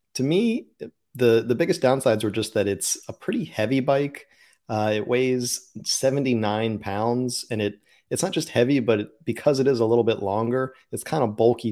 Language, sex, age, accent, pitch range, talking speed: English, male, 30-49, American, 105-125 Hz, 200 wpm